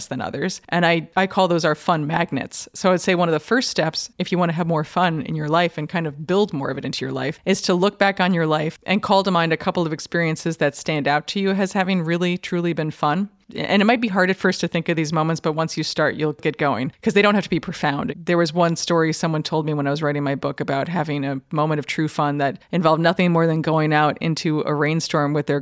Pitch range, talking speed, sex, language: 150-180 Hz, 285 wpm, female, English